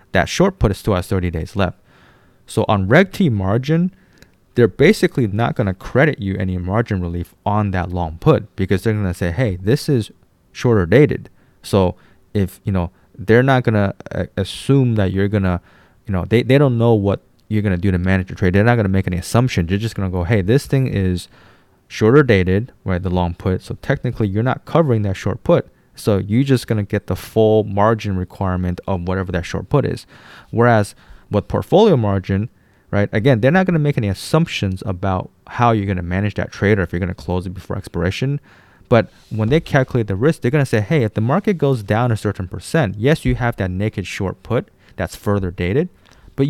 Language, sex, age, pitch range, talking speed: English, male, 20-39, 95-125 Hz, 220 wpm